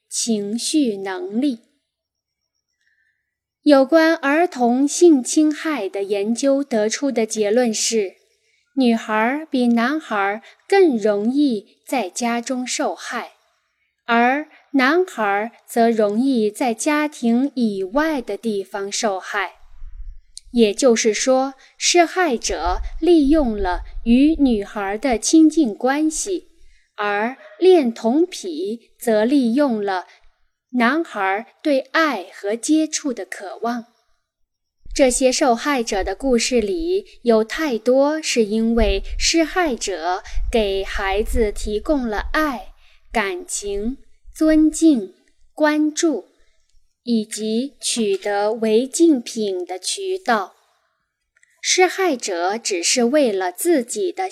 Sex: female